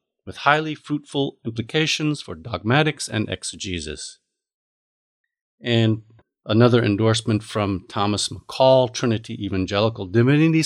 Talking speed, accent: 95 wpm, American